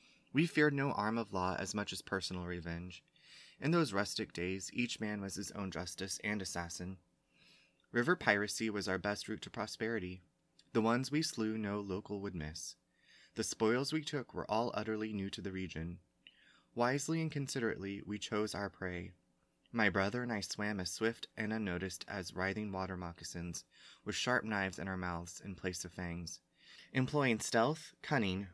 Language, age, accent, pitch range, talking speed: English, 20-39, American, 95-115 Hz, 175 wpm